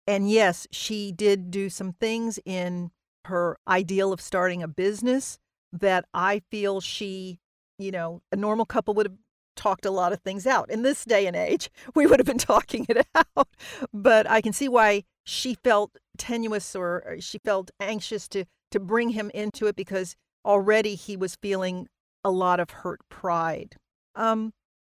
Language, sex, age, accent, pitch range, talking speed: English, female, 50-69, American, 175-215 Hz, 175 wpm